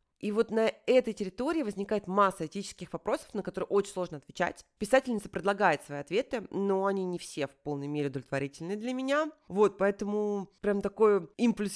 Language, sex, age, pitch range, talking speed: Russian, female, 30-49, 170-225 Hz, 170 wpm